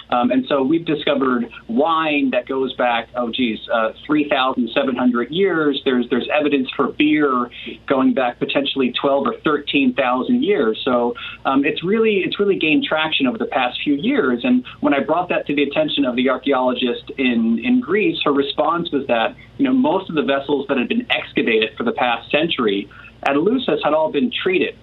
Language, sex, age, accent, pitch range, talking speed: English, male, 30-49, American, 130-210 Hz, 185 wpm